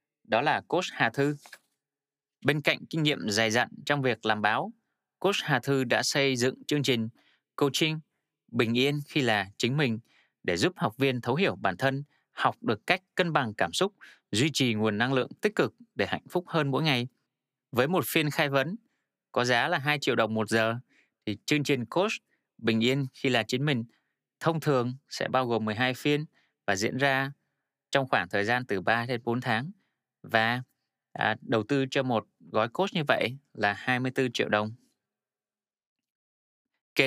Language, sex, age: Vietnamese, male, 20-39